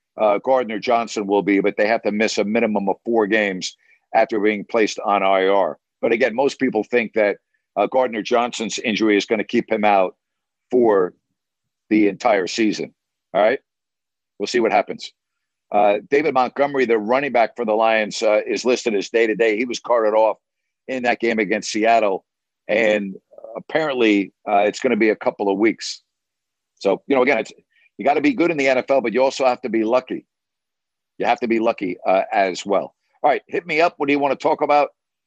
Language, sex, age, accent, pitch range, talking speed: English, male, 50-69, American, 105-135 Hz, 210 wpm